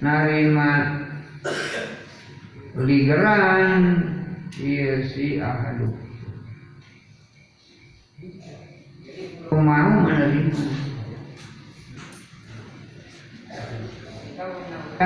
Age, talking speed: 50-69, 50 wpm